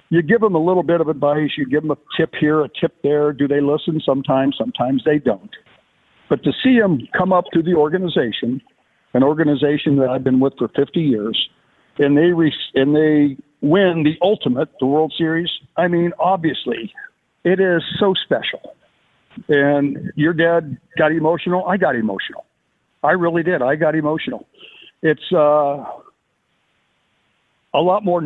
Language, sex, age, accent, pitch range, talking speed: English, male, 60-79, American, 140-175 Hz, 165 wpm